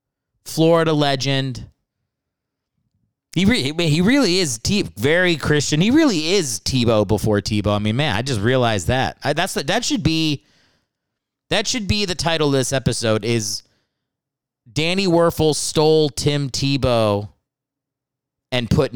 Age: 30-49